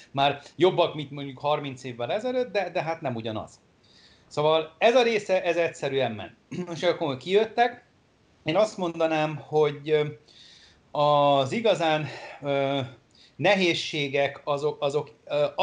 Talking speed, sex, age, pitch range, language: 130 wpm, male, 40-59, 130-155 Hz, Hungarian